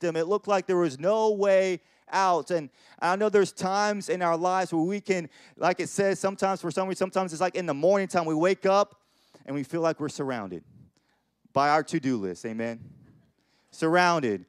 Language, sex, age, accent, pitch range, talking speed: English, male, 30-49, American, 150-190 Hz, 205 wpm